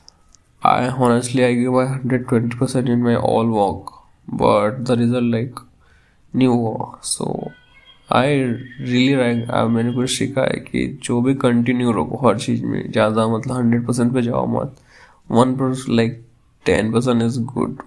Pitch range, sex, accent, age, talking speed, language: 115-125 Hz, male, native, 20-39, 140 wpm, Hindi